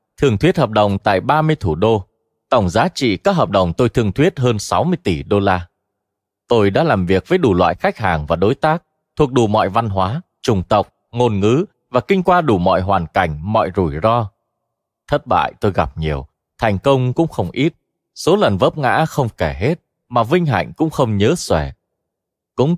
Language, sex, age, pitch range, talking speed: Vietnamese, male, 20-39, 95-145 Hz, 205 wpm